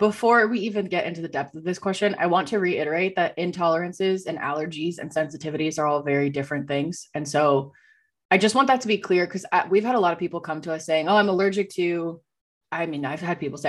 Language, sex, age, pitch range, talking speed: English, female, 20-39, 155-190 Hz, 240 wpm